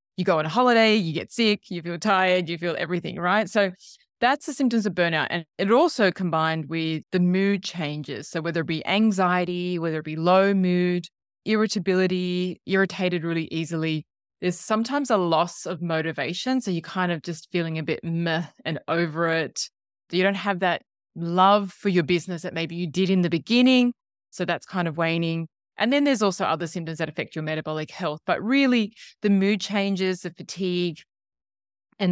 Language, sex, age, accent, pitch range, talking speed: English, female, 20-39, Australian, 160-200 Hz, 185 wpm